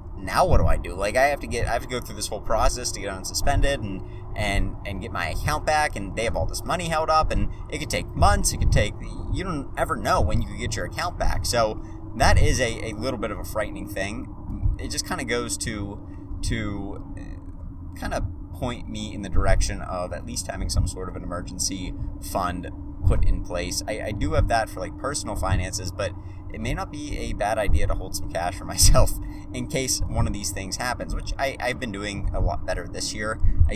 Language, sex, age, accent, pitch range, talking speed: English, male, 30-49, American, 90-100 Hz, 240 wpm